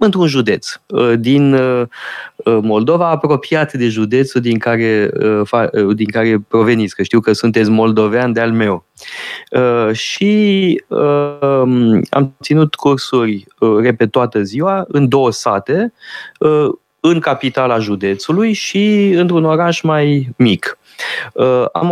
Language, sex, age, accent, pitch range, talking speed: Romanian, male, 20-39, native, 120-170 Hz, 105 wpm